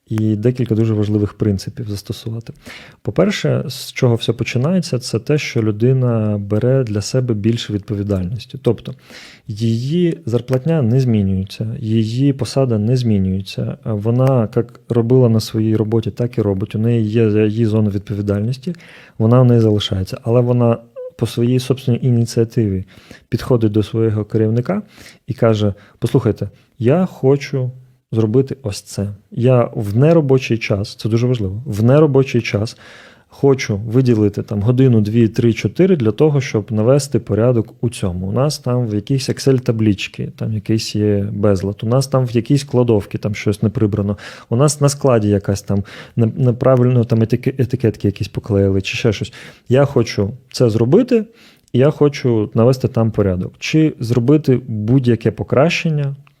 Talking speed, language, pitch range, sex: 145 wpm, Ukrainian, 110-130 Hz, male